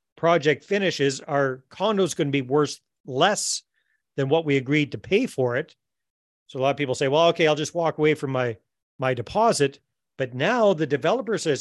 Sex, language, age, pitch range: male, English, 40-59, 130-160 Hz